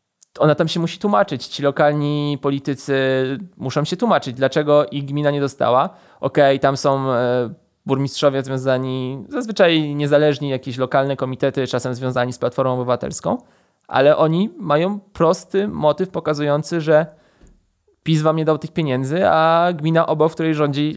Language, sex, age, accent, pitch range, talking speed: Polish, male, 20-39, native, 135-160 Hz, 145 wpm